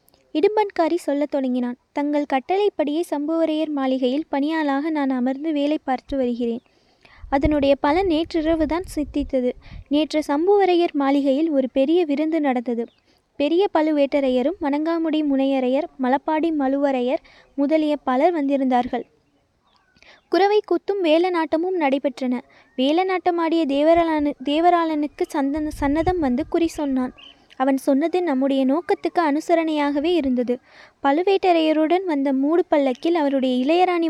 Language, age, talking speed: Tamil, 20-39, 95 wpm